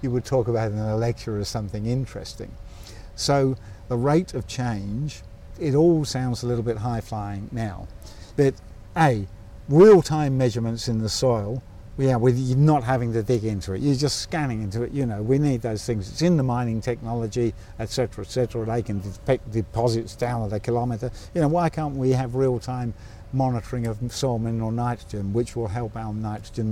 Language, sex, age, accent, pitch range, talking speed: English, male, 50-69, British, 110-135 Hz, 195 wpm